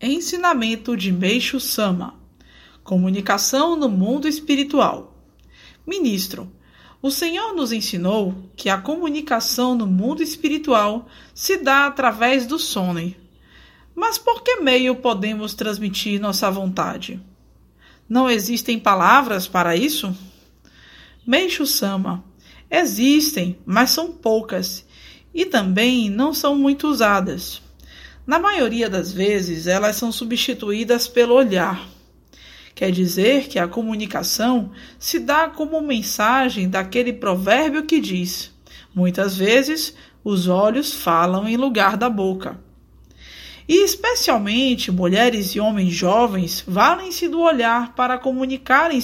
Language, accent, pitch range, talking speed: Portuguese, Brazilian, 190-275 Hz, 110 wpm